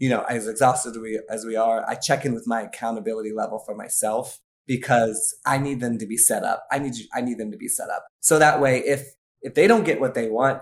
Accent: American